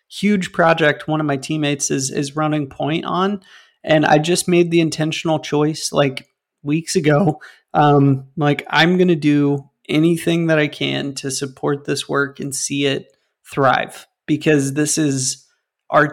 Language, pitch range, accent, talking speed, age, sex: English, 140-160 Hz, American, 160 wpm, 30-49, male